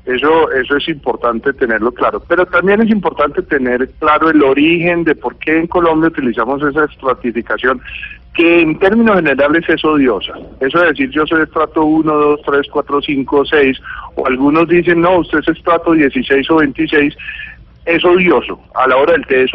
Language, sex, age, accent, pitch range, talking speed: Spanish, male, 40-59, Colombian, 135-175 Hz, 180 wpm